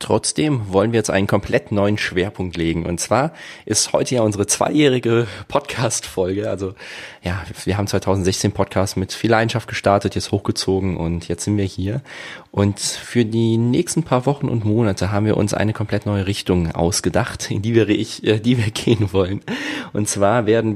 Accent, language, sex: German, German, male